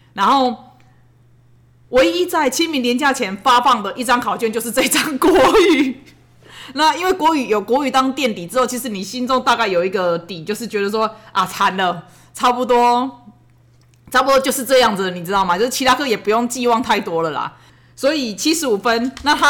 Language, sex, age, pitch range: Chinese, female, 20-39, 200-260 Hz